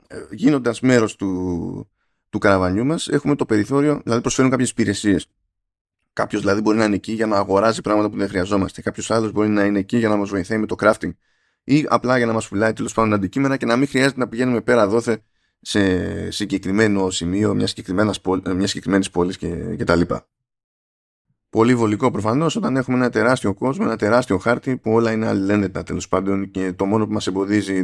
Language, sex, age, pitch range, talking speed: Greek, male, 20-39, 95-120 Hz, 190 wpm